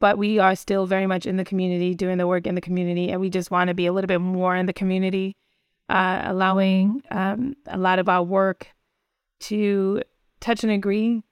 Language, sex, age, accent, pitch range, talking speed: English, female, 20-39, American, 180-200 Hz, 205 wpm